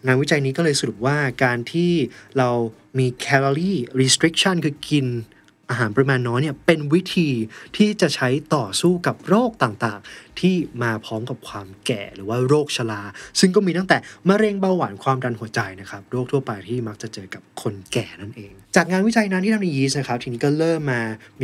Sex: male